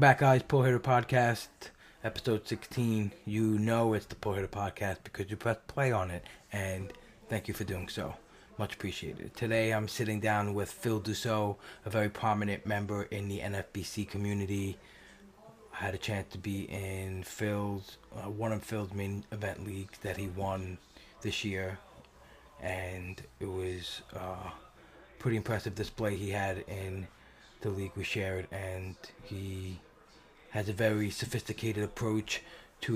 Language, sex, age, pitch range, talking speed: English, male, 20-39, 95-110 Hz, 155 wpm